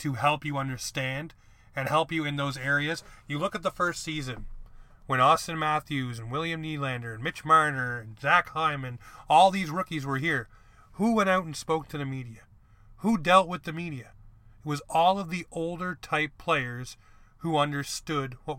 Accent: American